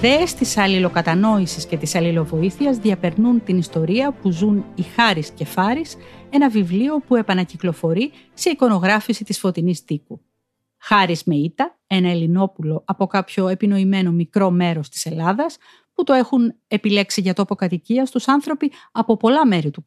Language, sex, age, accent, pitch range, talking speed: Greek, female, 40-59, native, 180-250 Hz, 150 wpm